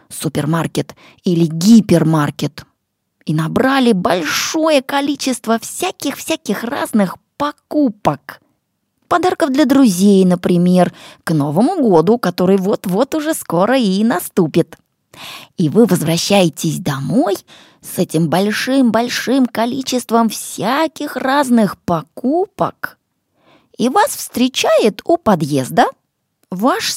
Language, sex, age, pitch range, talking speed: English, female, 20-39, 170-280 Hz, 90 wpm